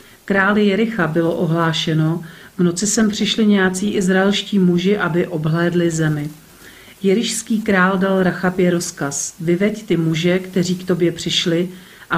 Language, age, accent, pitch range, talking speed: Czech, 40-59, native, 160-185 Hz, 135 wpm